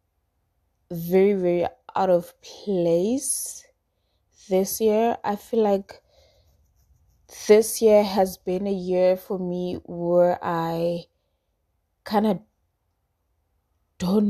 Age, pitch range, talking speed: 20-39, 175-210 Hz, 95 wpm